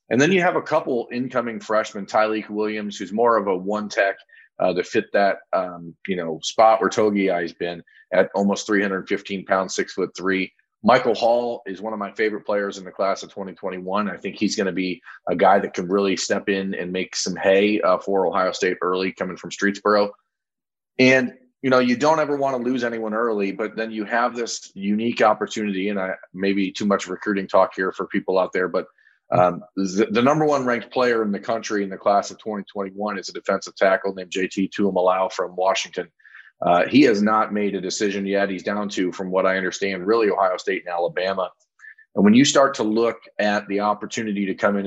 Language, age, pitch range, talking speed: English, 30-49, 95-115 Hz, 210 wpm